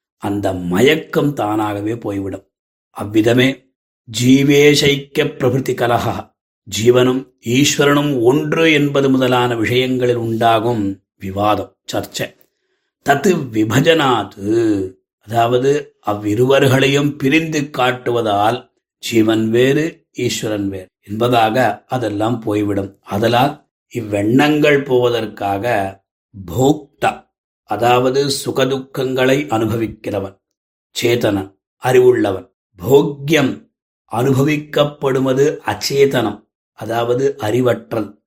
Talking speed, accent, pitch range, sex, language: 55 wpm, native, 105-140 Hz, male, Tamil